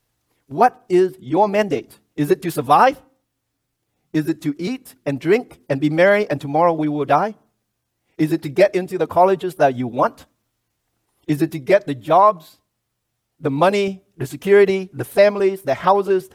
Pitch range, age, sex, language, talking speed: 135-215 Hz, 50-69, male, English, 170 wpm